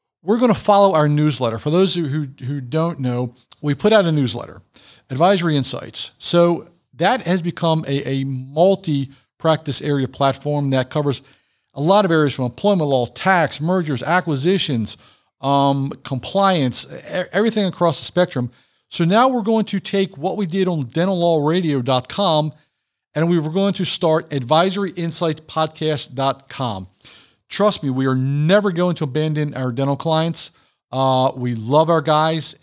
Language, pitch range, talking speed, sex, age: English, 135-170 Hz, 145 wpm, male, 50-69